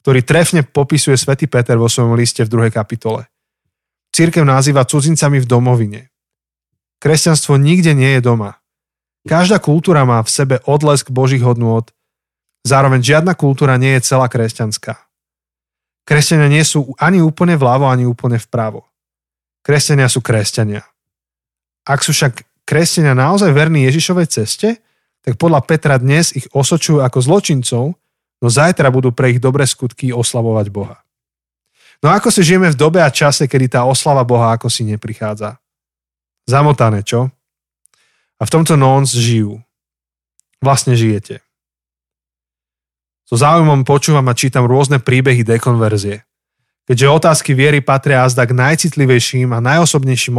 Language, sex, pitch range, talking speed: Slovak, male, 115-145 Hz, 135 wpm